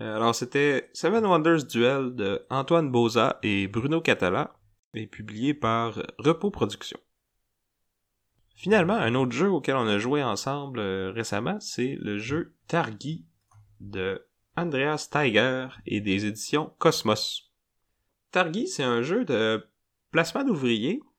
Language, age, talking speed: French, 30-49, 125 wpm